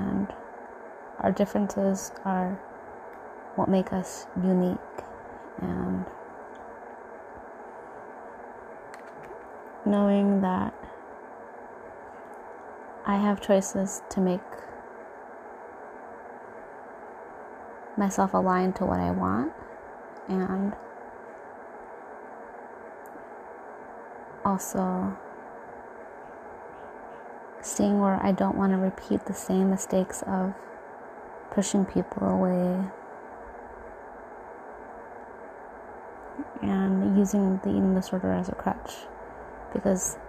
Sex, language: female, English